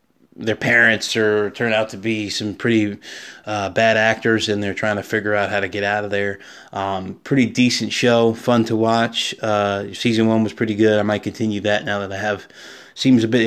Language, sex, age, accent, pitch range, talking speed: English, male, 20-39, American, 105-115 Hz, 215 wpm